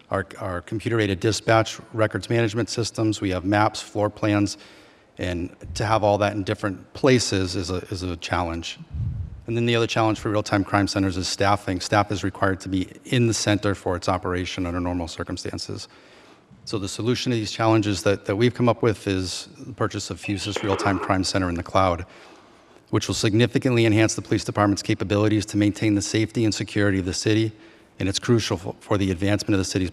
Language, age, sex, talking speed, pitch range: English, 40-59, male, 195 wpm, 100-115 Hz